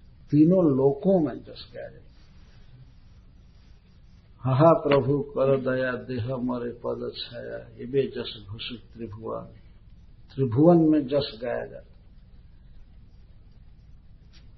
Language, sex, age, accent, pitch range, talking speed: Hindi, male, 60-79, native, 125-170 Hz, 95 wpm